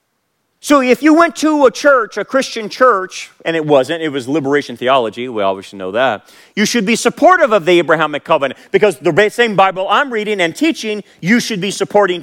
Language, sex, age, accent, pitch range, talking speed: English, male, 40-59, American, 155-225 Hz, 200 wpm